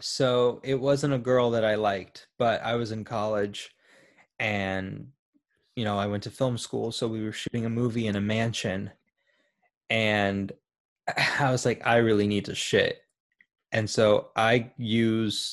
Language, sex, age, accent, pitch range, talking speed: English, male, 20-39, American, 110-135 Hz, 165 wpm